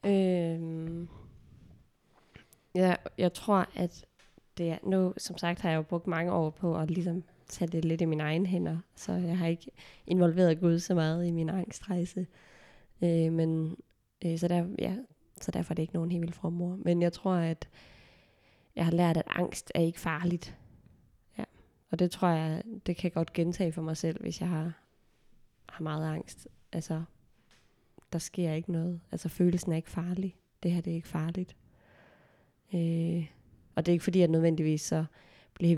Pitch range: 160-175 Hz